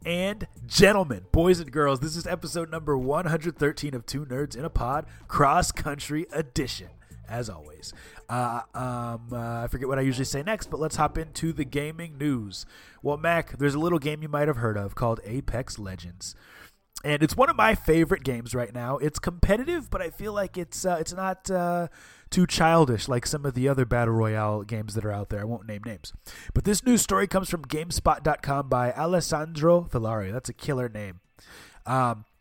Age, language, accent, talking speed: 20-39, English, American, 195 wpm